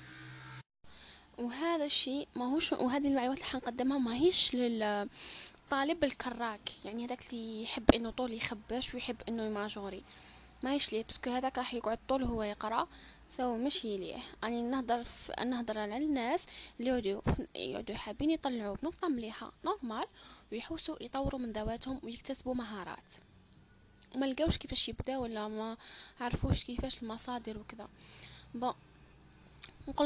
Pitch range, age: 225-285 Hz, 10-29